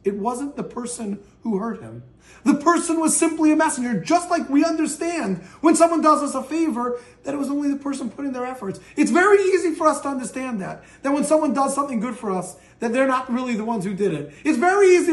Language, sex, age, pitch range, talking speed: English, male, 30-49, 220-310 Hz, 240 wpm